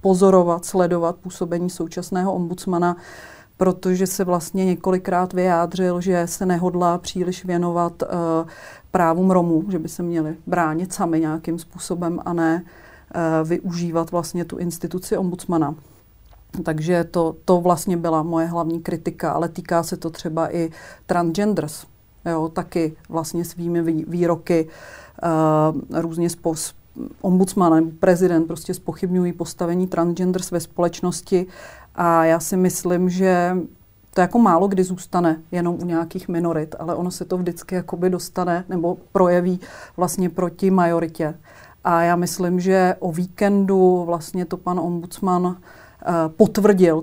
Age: 40-59